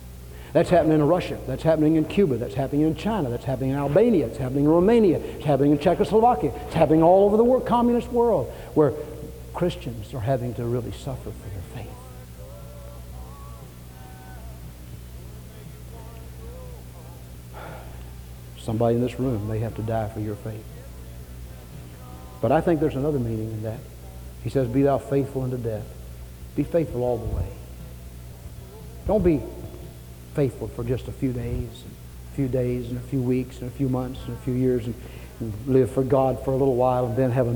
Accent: American